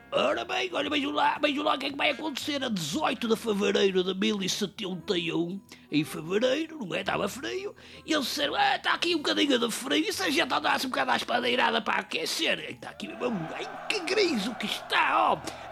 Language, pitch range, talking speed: English, 240-320 Hz, 215 wpm